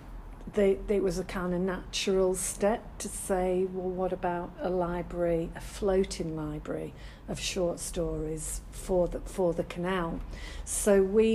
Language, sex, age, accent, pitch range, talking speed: English, female, 50-69, British, 170-195 Hz, 150 wpm